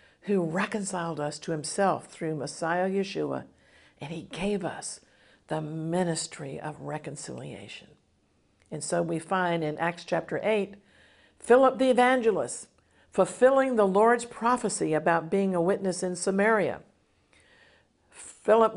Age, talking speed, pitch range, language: 50-69, 120 wpm, 165-235 Hz, English